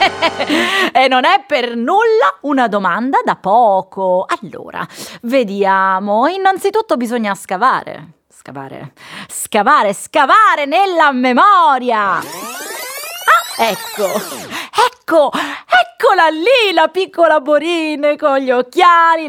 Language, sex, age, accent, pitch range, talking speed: Italian, female, 30-49, native, 250-345 Hz, 95 wpm